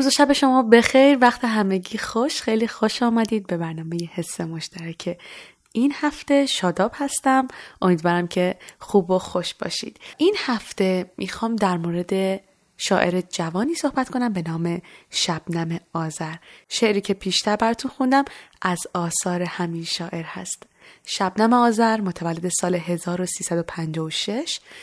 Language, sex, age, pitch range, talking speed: Persian, female, 20-39, 175-230 Hz, 135 wpm